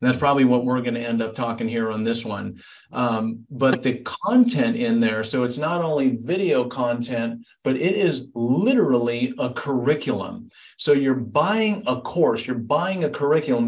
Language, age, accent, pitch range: English, 50-69, American, 125-160 Hz